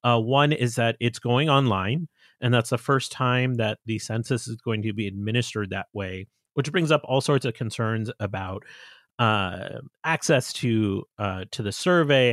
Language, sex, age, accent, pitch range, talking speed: English, male, 30-49, American, 110-145 Hz, 180 wpm